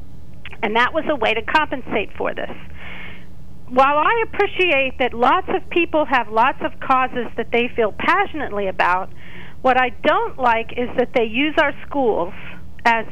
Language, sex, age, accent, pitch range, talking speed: English, female, 50-69, American, 230-310 Hz, 165 wpm